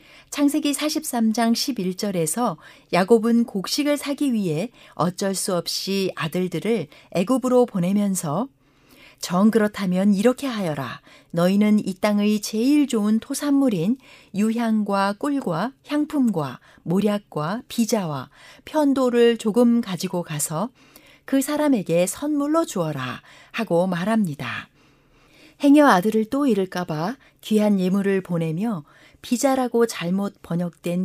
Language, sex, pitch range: Korean, female, 175-240 Hz